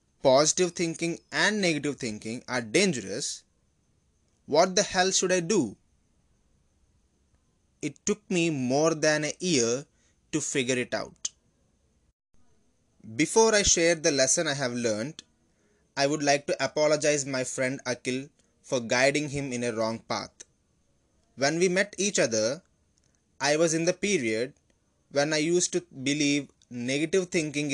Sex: male